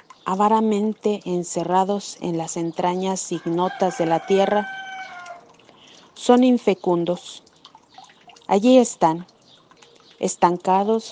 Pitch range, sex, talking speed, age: 185-235 Hz, female, 75 wpm, 40-59